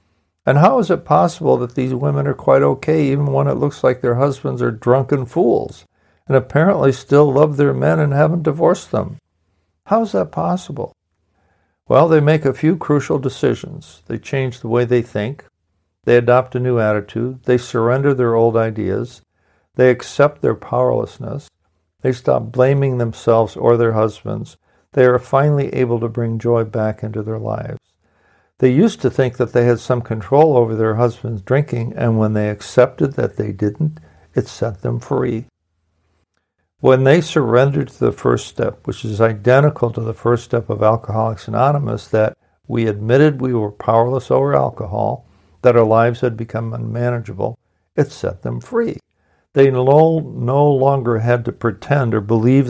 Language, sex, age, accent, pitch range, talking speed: English, male, 60-79, American, 110-130 Hz, 170 wpm